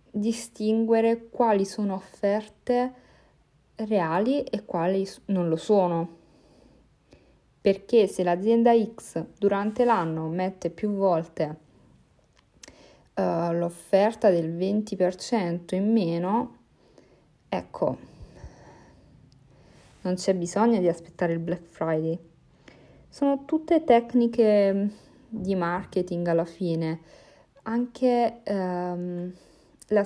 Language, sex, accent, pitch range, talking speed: Italian, female, native, 175-220 Hz, 90 wpm